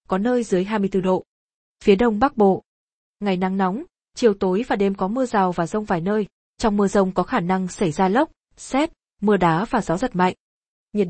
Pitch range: 185-230 Hz